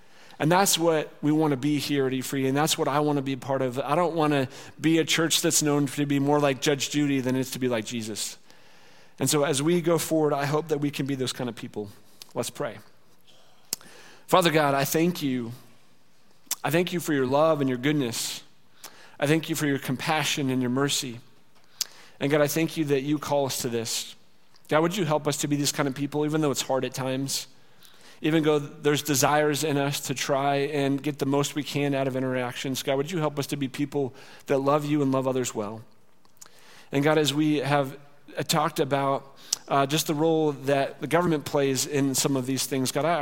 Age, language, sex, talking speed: 40-59, English, male, 230 wpm